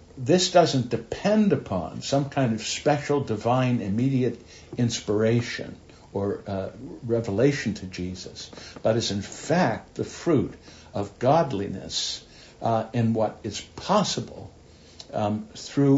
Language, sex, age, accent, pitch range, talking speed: English, male, 60-79, American, 100-130 Hz, 115 wpm